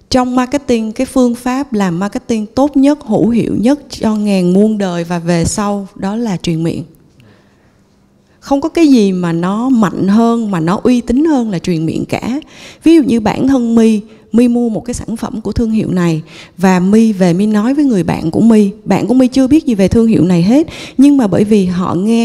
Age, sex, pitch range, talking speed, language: 20-39, female, 185-245 Hz, 225 wpm, Vietnamese